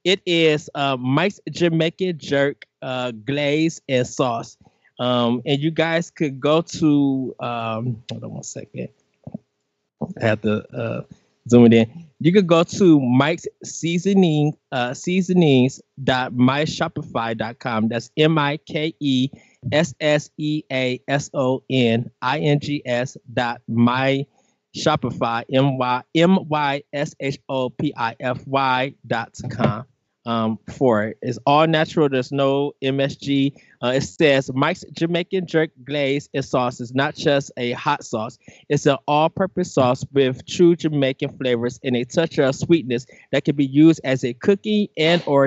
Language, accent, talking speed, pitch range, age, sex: English, American, 110 wpm, 125-155 Hz, 20-39, male